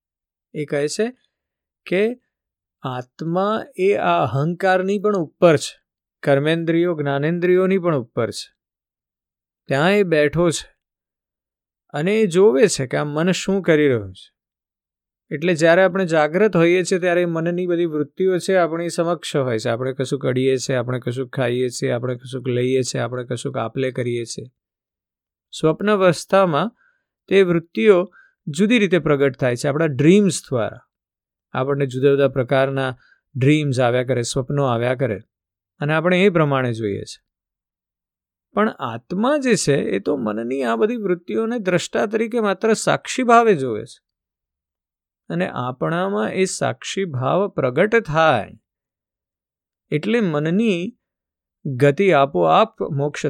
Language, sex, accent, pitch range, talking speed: Gujarati, male, native, 125-185 Hz, 80 wpm